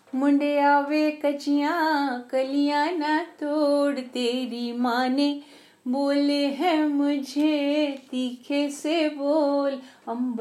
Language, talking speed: English, 85 wpm